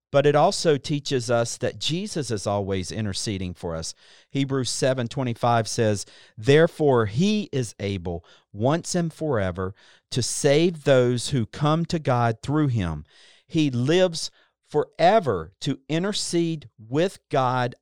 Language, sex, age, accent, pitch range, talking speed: English, male, 50-69, American, 115-150 Hz, 130 wpm